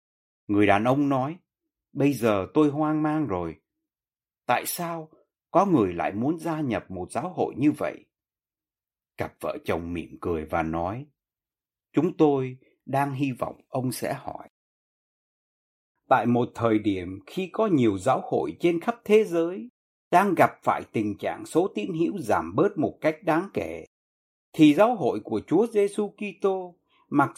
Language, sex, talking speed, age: Vietnamese, male, 160 wpm, 60-79